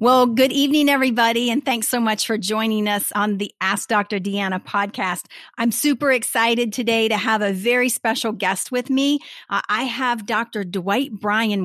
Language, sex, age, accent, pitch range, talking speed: English, female, 40-59, American, 190-230 Hz, 180 wpm